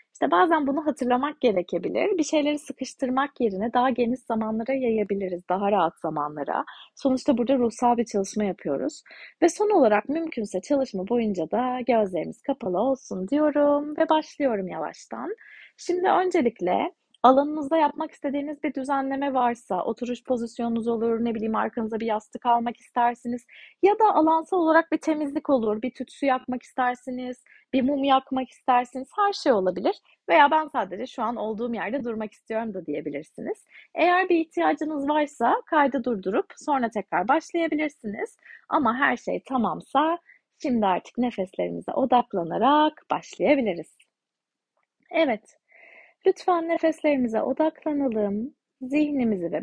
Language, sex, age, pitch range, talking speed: Turkish, female, 30-49, 225-305 Hz, 130 wpm